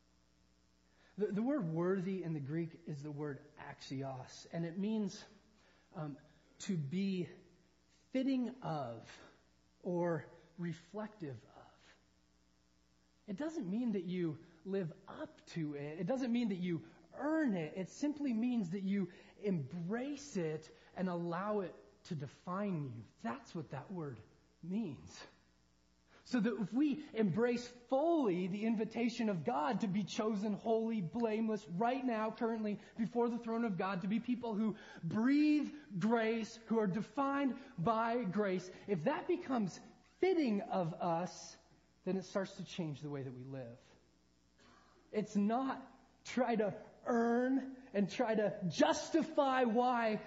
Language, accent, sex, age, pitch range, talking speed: English, American, male, 30-49, 155-230 Hz, 140 wpm